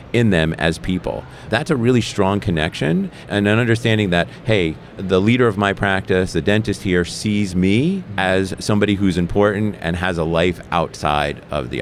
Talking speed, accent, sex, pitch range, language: 180 wpm, American, male, 90-110 Hz, English